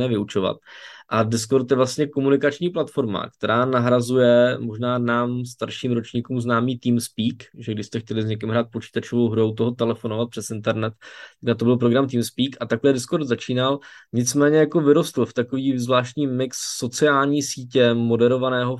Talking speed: 145 wpm